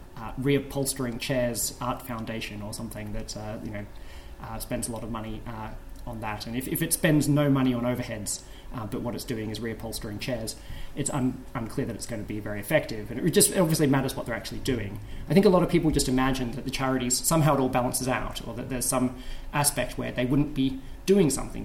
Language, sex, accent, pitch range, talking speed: English, male, Australian, 110-135 Hz, 225 wpm